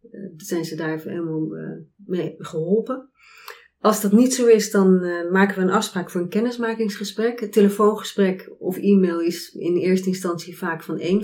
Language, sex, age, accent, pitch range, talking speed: Dutch, female, 30-49, Dutch, 170-205 Hz, 170 wpm